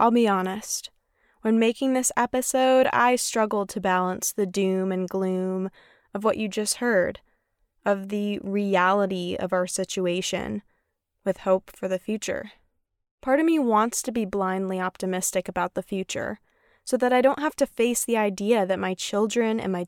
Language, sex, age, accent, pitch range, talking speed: English, female, 20-39, American, 185-240 Hz, 170 wpm